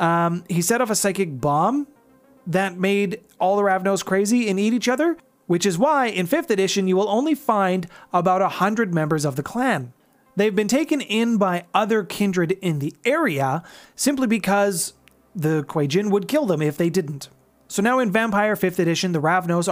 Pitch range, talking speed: 160-215 Hz, 190 wpm